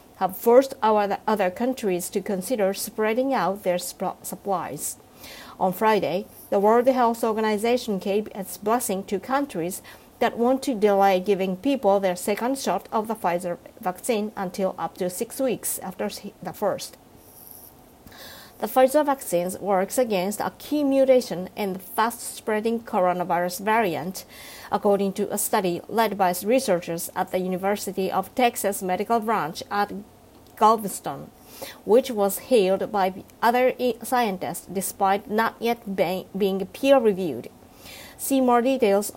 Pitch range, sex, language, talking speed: 190-235 Hz, female, English, 130 wpm